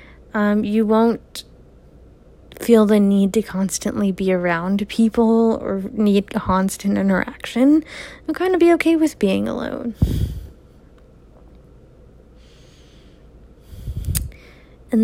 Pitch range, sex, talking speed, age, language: 195-235 Hz, female, 90 wpm, 20-39, English